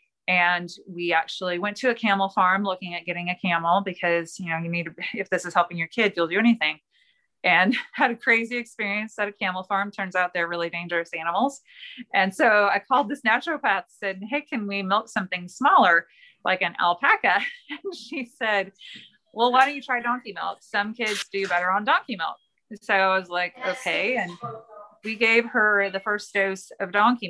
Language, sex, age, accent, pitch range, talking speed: English, female, 30-49, American, 180-225 Hz, 200 wpm